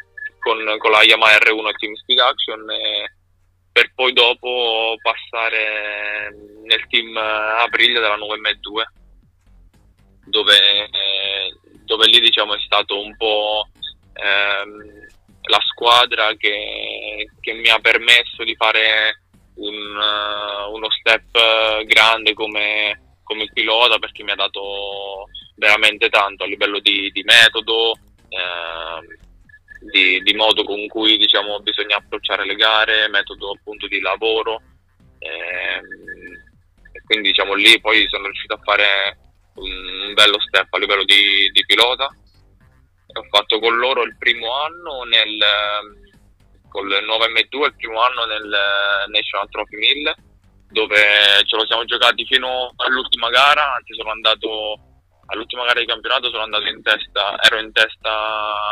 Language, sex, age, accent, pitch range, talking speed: Italian, male, 20-39, native, 100-115 Hz, 135 wpm